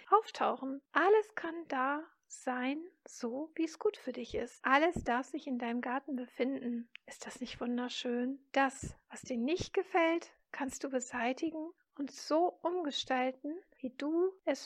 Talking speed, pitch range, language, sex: 150 wpm, 245-295 Hz, German, female